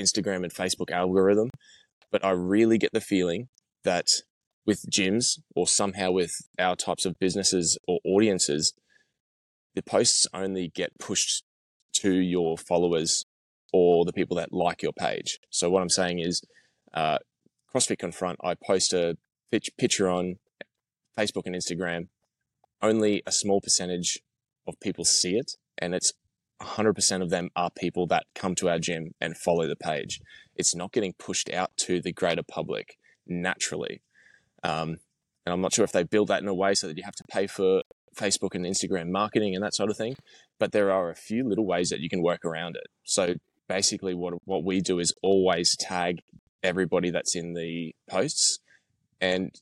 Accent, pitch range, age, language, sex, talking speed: Australian, 90-100 Hz, 10-29, English, male, 175 wpm